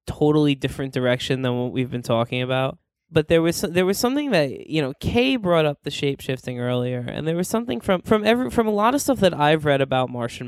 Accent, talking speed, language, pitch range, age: American, 235 wpm, English, 140-200 Hz, 10-29